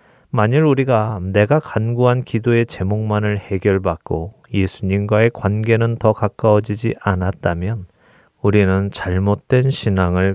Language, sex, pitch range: Korean, male, 95-115 Hz